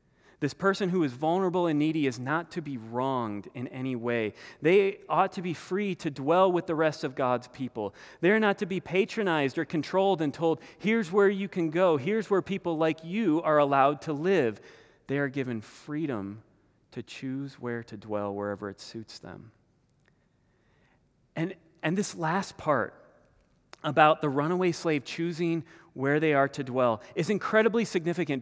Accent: American